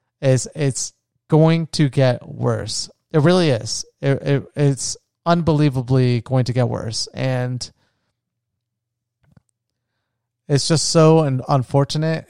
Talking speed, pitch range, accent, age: 105 wpm, 120-140 Hz, American, 30-49